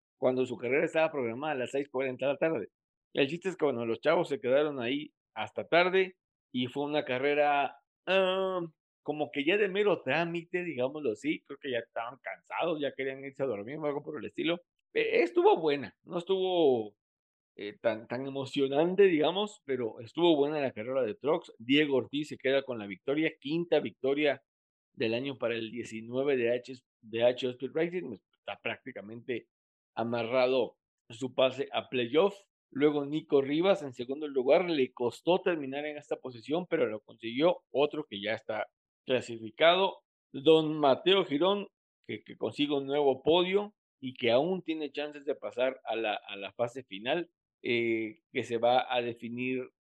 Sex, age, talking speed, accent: male, 50-69, 170 wpm, Mexican